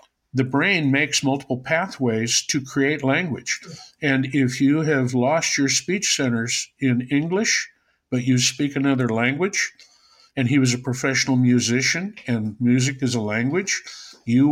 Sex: male